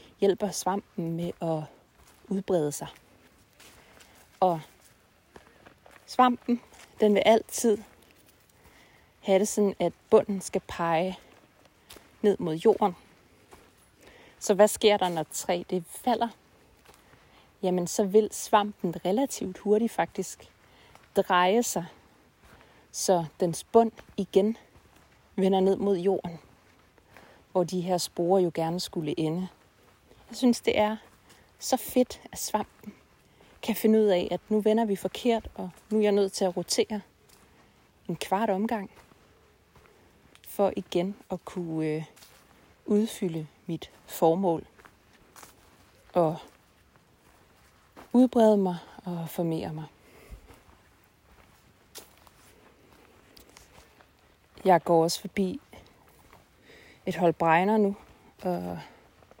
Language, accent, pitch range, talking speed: Danish, native, 170-210 Hz, 105 wpm